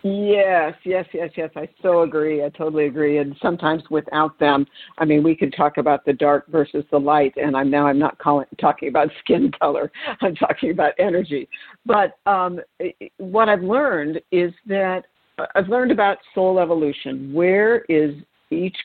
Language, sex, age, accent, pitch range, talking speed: English, female, 50-69, American, 150-190 Hz, 170 wpm